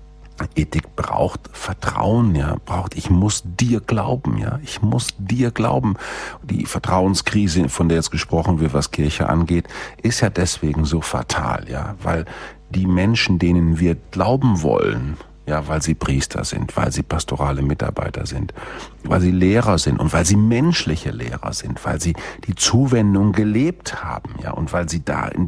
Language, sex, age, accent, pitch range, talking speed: German, male, 50-69, German, 75-100 Hz, 160 wpm